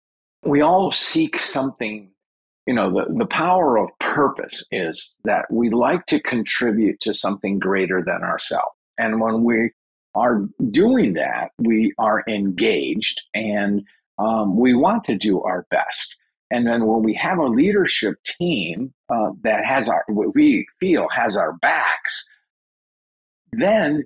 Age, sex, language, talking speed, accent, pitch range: 50-69, male, English, 145 wpm, American, 95-160 Hz